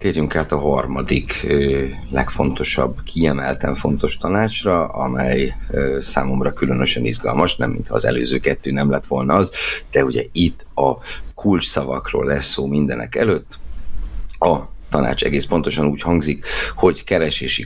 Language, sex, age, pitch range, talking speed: Hungarian, male, 60-79, 65-85 Hz, 130 wpm